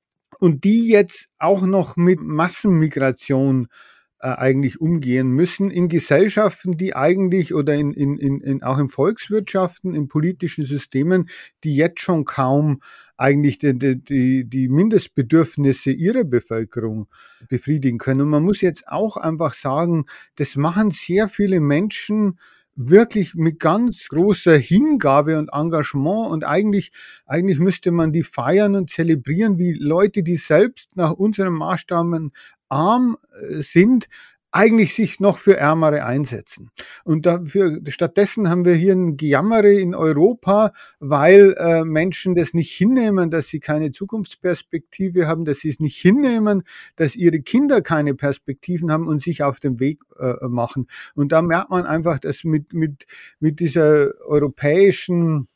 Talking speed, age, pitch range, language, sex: 140 wpm, 50-69, 145-190 Hz, German, male